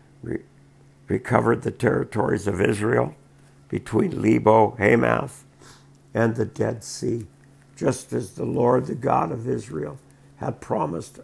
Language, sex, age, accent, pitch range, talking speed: English, male, 60-79, American, 110-140 Hz, 115 wpm